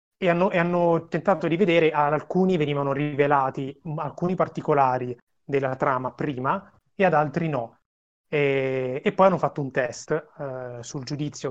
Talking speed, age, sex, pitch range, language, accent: 155 wpm, 30-49, male, 135-165 Hz, Italian, native